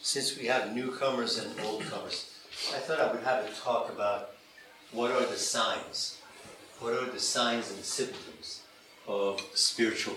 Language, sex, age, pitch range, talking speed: English, male, 60-79, 110-135 Hz, 155 wpm